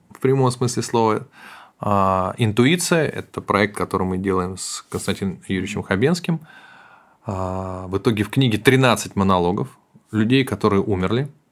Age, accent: 20-39, native